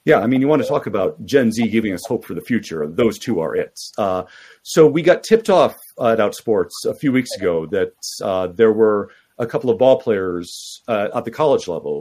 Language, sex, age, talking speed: English, male, 40-59, 235 wpm